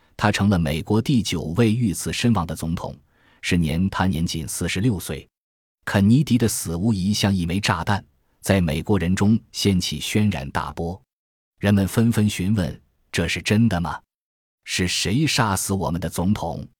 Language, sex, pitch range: Chinese, male, 85-110 Hz